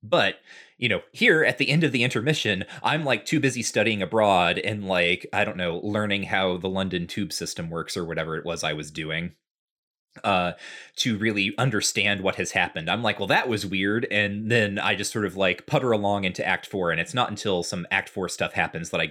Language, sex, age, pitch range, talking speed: English, male, 30-49, 90-115 Hz, 225 wpm